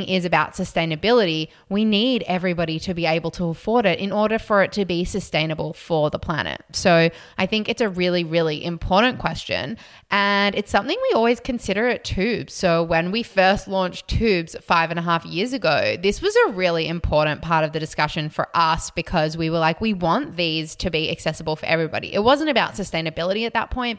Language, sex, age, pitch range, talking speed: English, female, 20-39, 165-205 Hz, 205 wpm